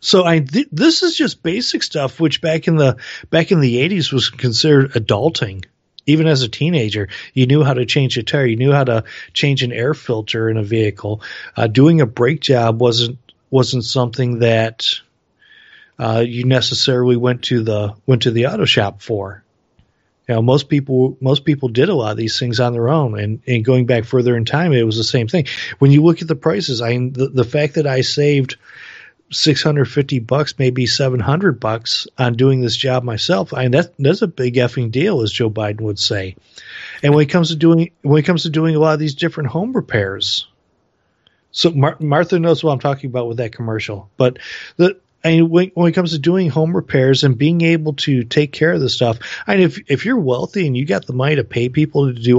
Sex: male